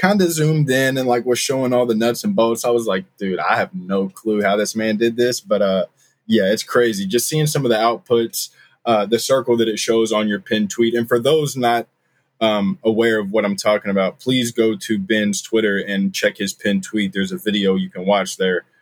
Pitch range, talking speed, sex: 105-130 Hz, 240 wpm, male